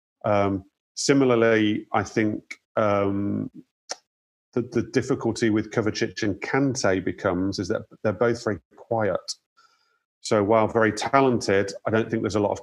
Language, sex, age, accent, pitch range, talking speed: English, male, 40-59, British, 100-120 Hz, 145 wpm